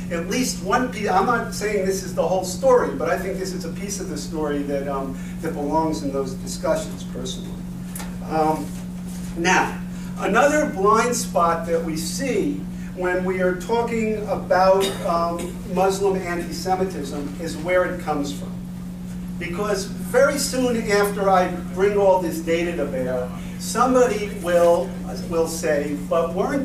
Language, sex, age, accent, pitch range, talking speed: English, male, 50-69, American, 175-195 Hz, 155 wpm